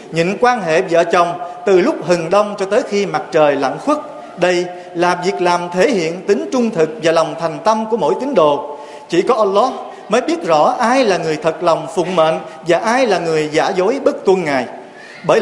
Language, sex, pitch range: Vietnamese, male, 170-230 Hz